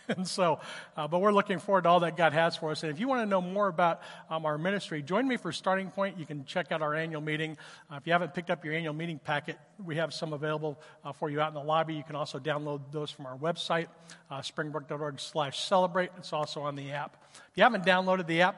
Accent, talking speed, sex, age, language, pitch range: American, 260 wpm, male, 50-69, English, 155-190 Hz